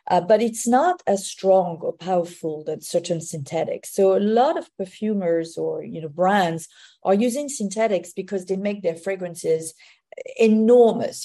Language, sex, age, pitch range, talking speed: English, female, 40-59, 170-220 Hz, 145 wpm